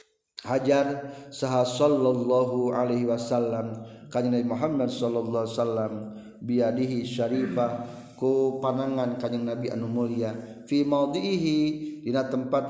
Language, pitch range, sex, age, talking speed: Indonesian, 120-175 Hz, male, 40-59, 100 wpm